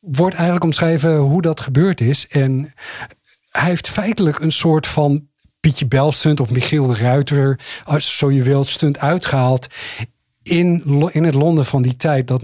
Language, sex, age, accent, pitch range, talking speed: Dutch, male, 50-69, Dutch, 130-165 Hz, 165 wpm